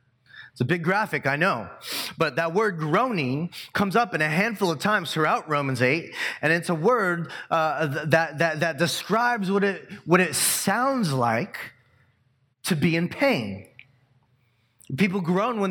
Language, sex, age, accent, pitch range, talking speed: English, male, 30-49, American, 125-170 Hz, 160 wpm